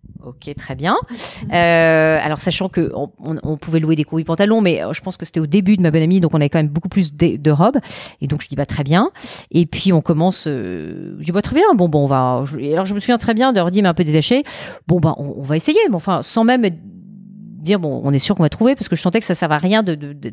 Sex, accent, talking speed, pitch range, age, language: female, French, 290 wpm, 150-190 Hz, 40-59, French